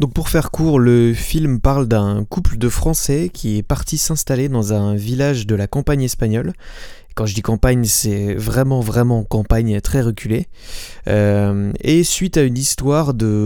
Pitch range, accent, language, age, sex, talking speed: 110-145 Hz, French, French, 20-39, male, 175 wpm